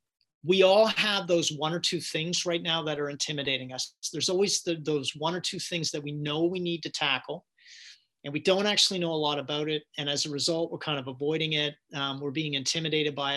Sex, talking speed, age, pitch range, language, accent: male, 230 wpm, 40-59, 150-180 Hz, English, American